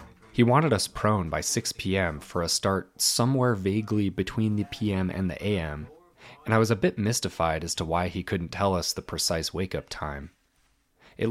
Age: 30-49